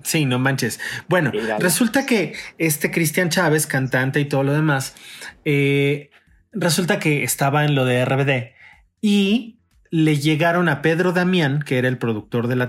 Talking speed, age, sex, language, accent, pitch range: 160 wpm, 30-49, male, Spanish, Mexican, 130-170 Hz